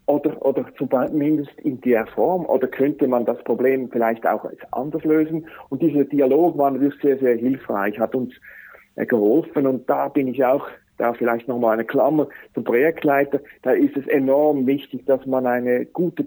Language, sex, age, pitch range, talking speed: German, male, 50-69, 125-145 Hz, 180 wpm